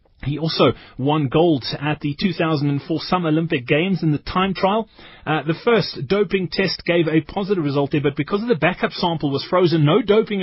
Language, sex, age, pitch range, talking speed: English, male, 30-49, 140-185 Hz, 195 wpm